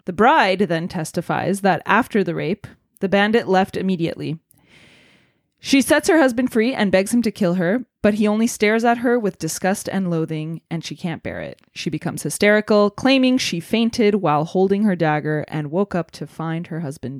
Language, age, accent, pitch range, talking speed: English, 20-39, American, 165-215 Hz, 190 wpm